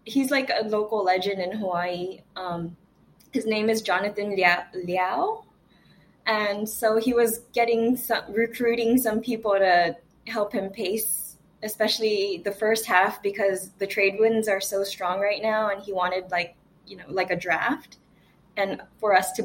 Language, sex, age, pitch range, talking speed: English, female, 20-39, 190-235 Hz, 165 wpm